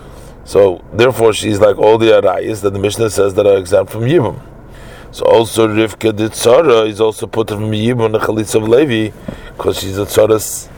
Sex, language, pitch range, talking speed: male, English, 110-135 Hz, 200 wpm